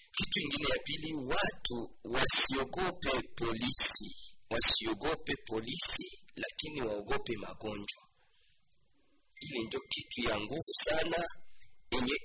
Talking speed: 90 wpm